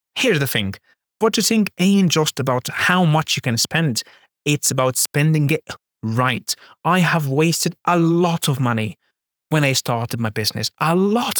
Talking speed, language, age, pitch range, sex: 175 wpm, English, 30-49, 120-155 Hz, male